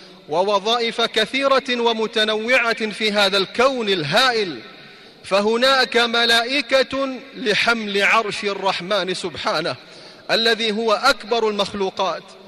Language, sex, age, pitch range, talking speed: Arabic, male, 30-49, 200-240 Hz, 80 wpm